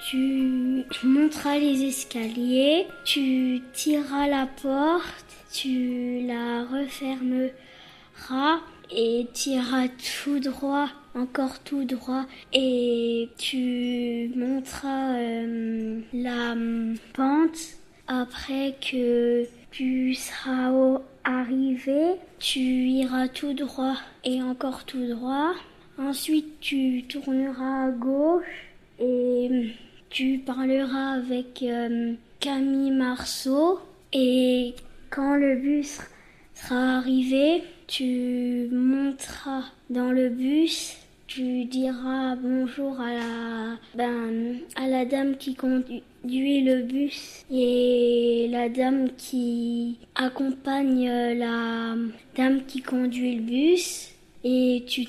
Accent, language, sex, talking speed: French, French, female, 95 wpm